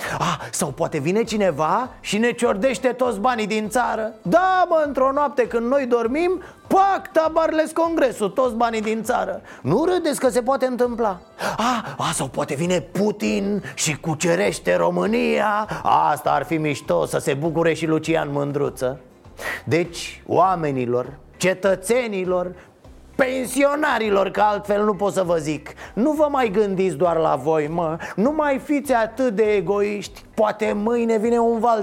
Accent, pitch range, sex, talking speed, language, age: native, 165-245 Hz, male, 155 wpm, Romanian, 30-49